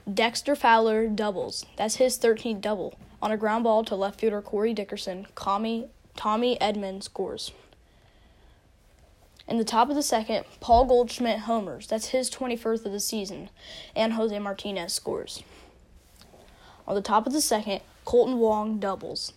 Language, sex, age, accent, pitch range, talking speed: English, female, 10-29, American, 205-235 Hz, 145 wpm